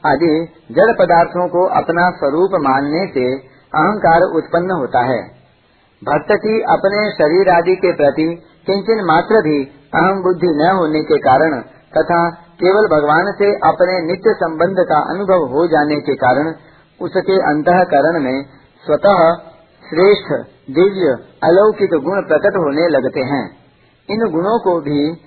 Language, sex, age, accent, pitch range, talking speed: Hindi, male, 50-69, native, 155-190 Hz, 140 wpm